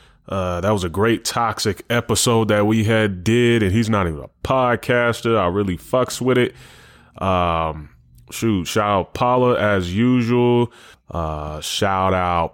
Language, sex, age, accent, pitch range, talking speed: English, male, 20-39, American, 90-115 Hz, 155 wpm